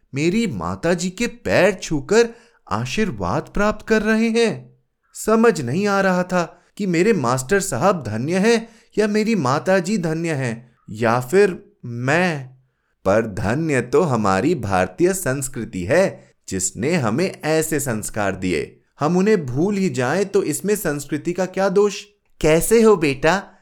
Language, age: Hindi, 30-49